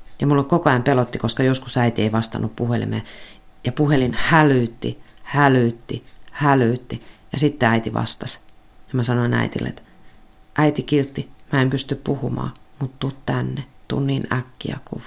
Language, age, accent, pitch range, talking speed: Finnish, 40-59, native, 115-145 Hz, 150 wpm